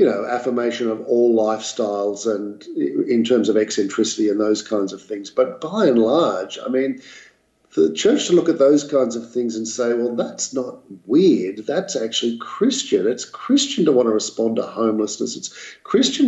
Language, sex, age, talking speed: English, male, 50-69, 190 wpm